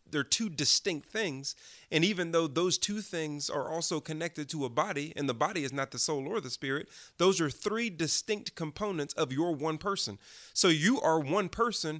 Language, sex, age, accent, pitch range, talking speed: English, male, 30-49, American, 145-175 Hz, 200 wpm